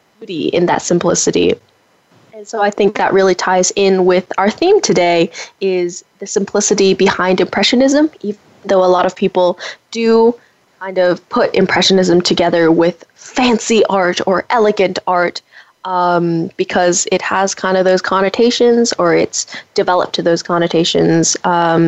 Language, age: English, 10-29